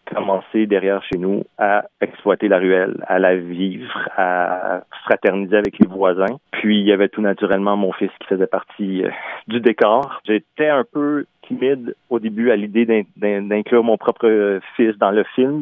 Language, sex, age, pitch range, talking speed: French, male, 40-59, 95-110 Hz, 170 wpm